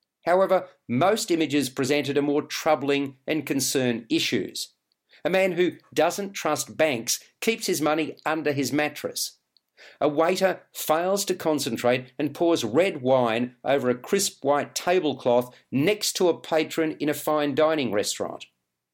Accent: Australian